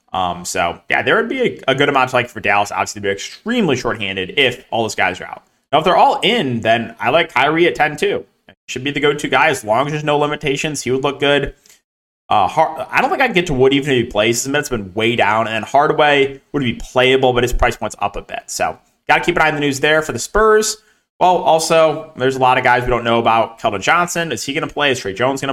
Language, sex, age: English, male, 20-39